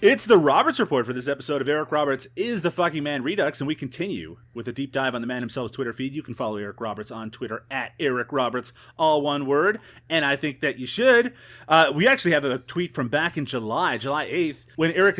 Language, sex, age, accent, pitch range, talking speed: English, male, 30-49, American, 120-170 Hz, 240 wpm